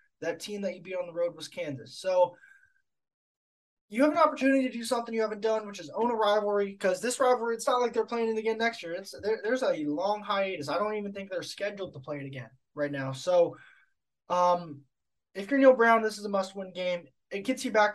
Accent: American